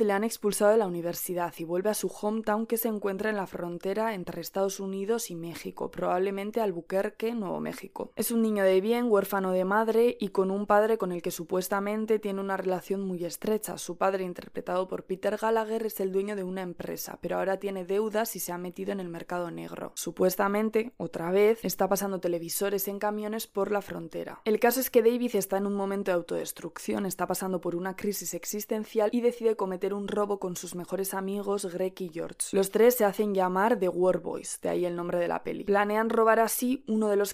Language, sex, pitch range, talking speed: Spanish, female, 180-215 Hz, 210 wpm